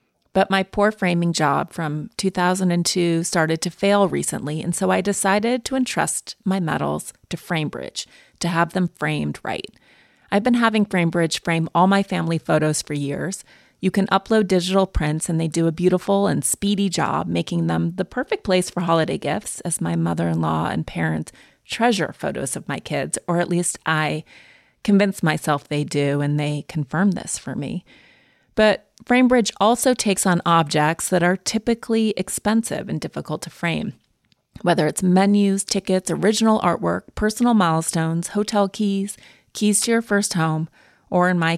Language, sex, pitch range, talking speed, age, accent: English, female, 160-210 Hz, 165 wpm, 30-49, American